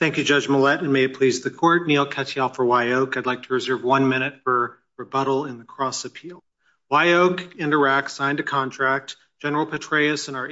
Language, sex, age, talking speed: English, male, 40-59, 200 wpm